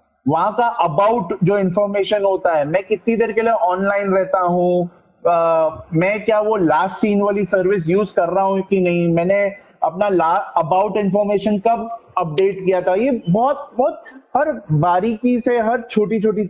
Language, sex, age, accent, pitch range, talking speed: Hindi, male, 30-49, native, 185-230 Hz, 165 wpm